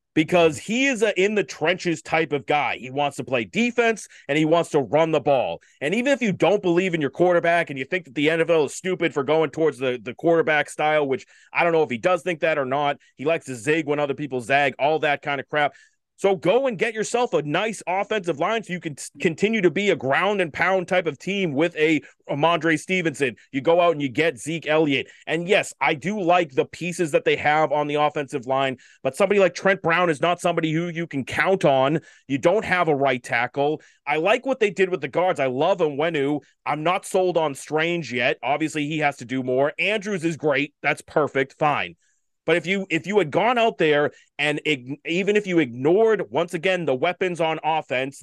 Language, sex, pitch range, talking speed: English, male, 145-180 Hz, 230 wpm